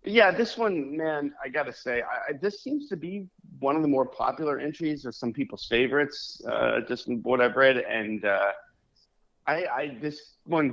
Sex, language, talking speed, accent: male, English, 180 wpm, American